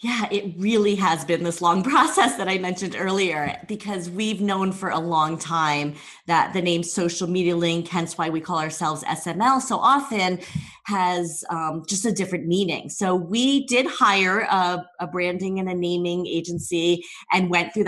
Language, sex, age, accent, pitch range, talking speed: English, female, 30-49, American, 175-220 Hz, 180 wpm